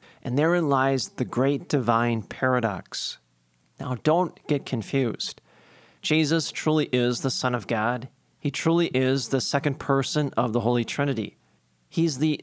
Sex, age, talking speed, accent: male, 40-59, 145 wpm, American